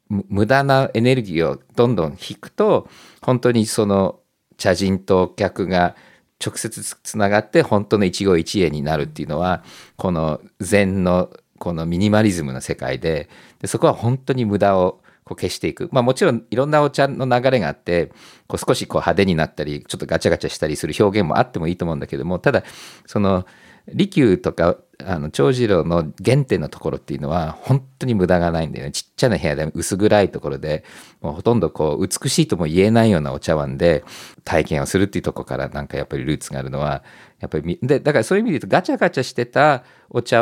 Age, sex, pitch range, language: 50-69, male, 85-125 Hz, Japanese